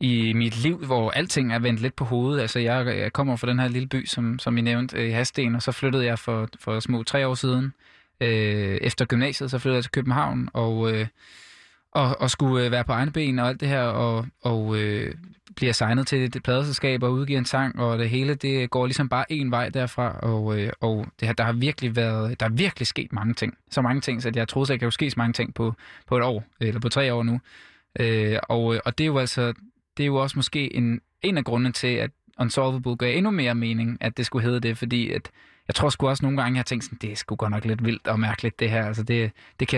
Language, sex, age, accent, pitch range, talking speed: Danish, male, 20-39, native, 115-130 Hz, 255 wpm